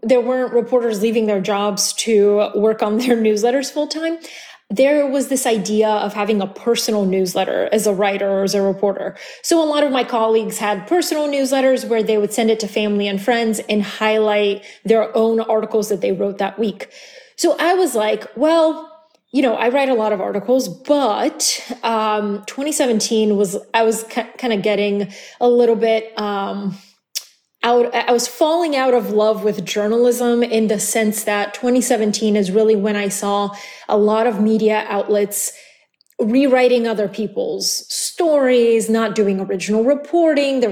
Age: 20-39